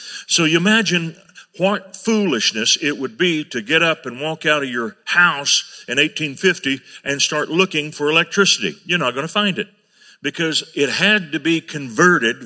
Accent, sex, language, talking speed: American, male, English, 175 wpm